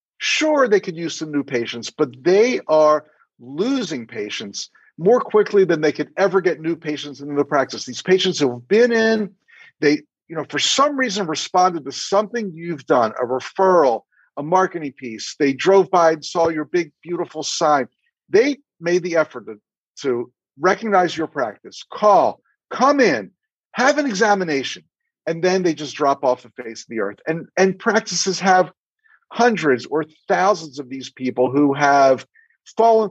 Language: English